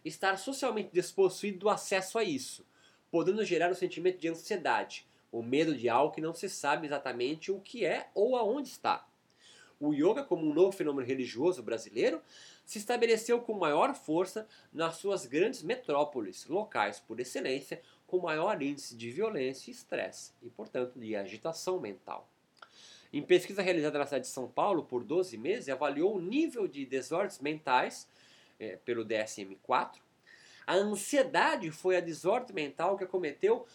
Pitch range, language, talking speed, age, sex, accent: 140-220 Hz, Portuguese, 160 wpm, 20-39, male, Brazilian